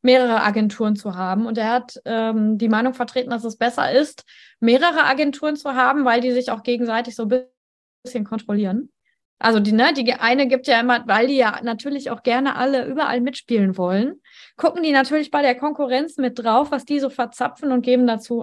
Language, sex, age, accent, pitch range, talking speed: German, female, 20-39, German, 245-290 Hz, 195 wpm